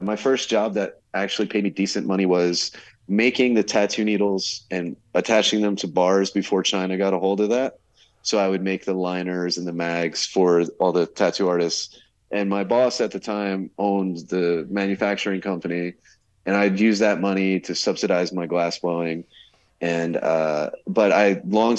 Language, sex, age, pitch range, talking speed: English, male, 30-49, 90-110 Hz, 180 wpm